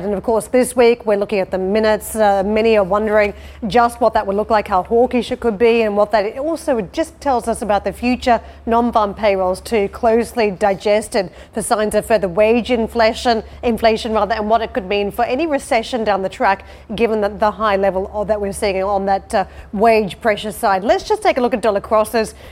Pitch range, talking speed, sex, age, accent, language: 205-235 Hz, 225 wpm, female, 30-49, Australian, English